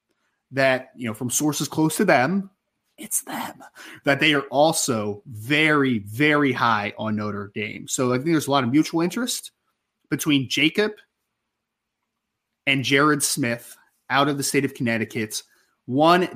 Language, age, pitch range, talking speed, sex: English, 20-39, 125-155 Hz, 150 wpm, male